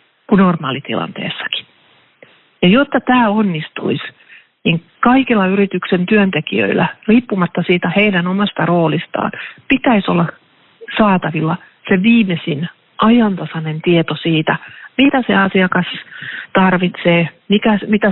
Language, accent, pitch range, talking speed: Finnish, native, 165-200 Hz, 95 wpm